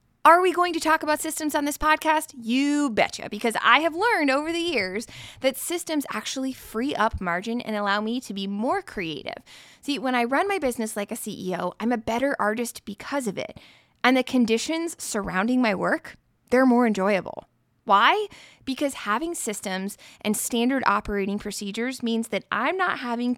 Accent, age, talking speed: American, 20-39, 180 wpm